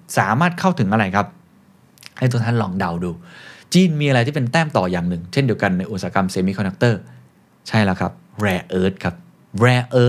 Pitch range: 105-135 Hz